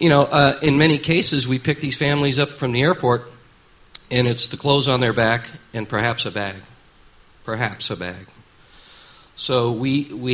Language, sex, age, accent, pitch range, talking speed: English, male, 50-69, American, 110-130 Hz, 180 wpm